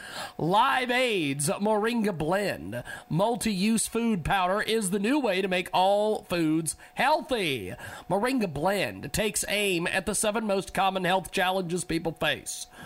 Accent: American